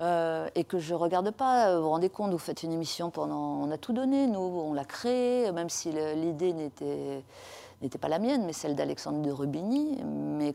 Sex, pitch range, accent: female, 150-210 Hz, French